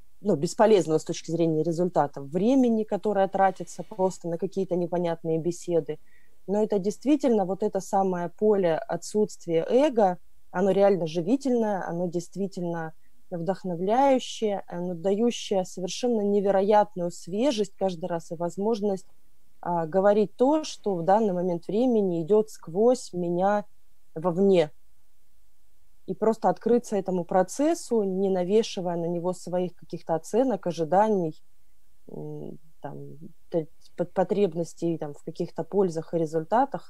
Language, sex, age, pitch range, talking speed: Russian, female, 20-39, 170-205 Hz, 110 wpm